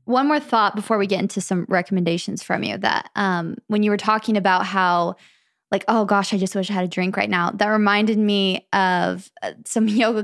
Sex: female